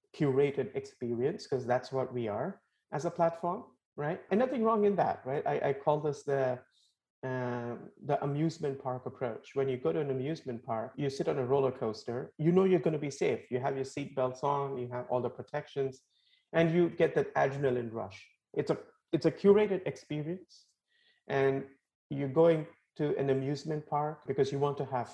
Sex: male